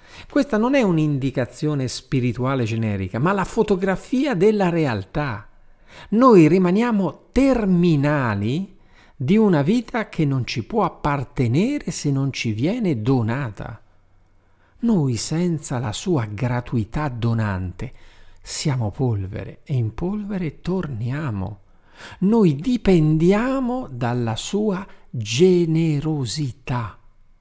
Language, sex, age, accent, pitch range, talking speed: Italian, male, 50-69, native, 100-165 Hz, 95 wpm